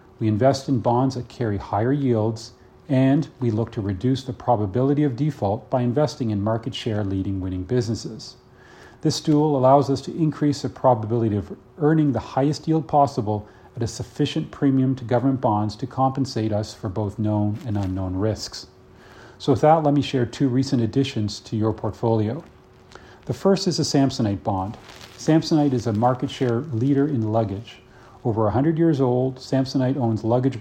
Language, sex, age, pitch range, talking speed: English, male, 40-59, 110-140 Hz, 175 wpm